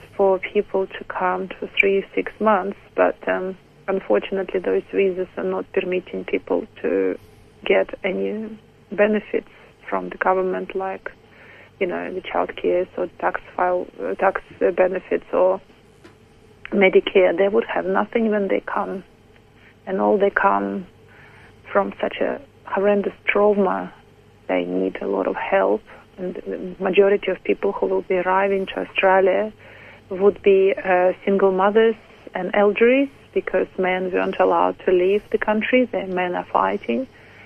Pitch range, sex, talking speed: 120-200 Hz, female, 140 wpm